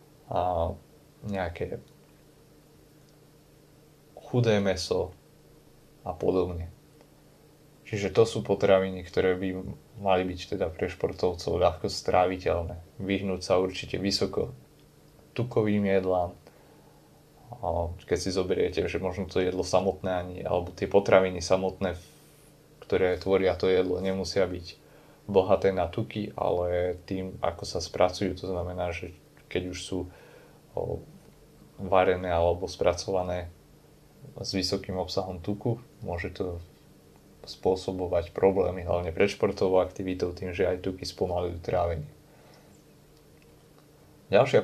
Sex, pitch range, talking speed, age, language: male, 90-100 Hz, 105 wpm, 20-39, Slovak